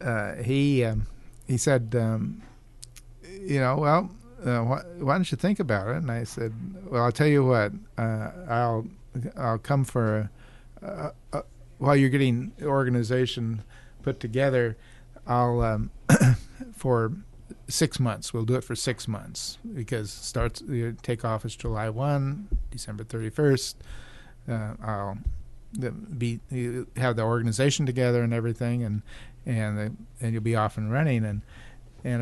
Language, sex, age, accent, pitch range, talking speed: English, male, 50-69, American, 110-130 Hz, 155 wpm